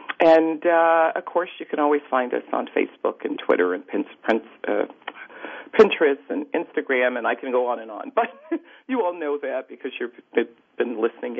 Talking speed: 175 wpm